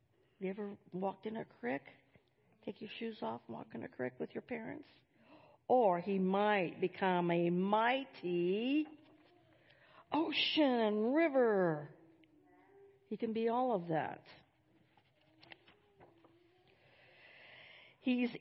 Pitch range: 170-225 Hz